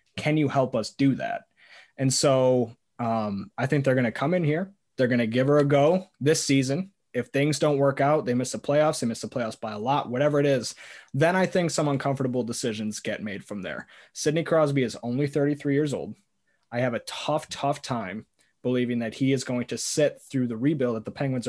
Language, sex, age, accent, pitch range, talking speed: English, male, 20-39, American, 120-150 Hz, 225 wpm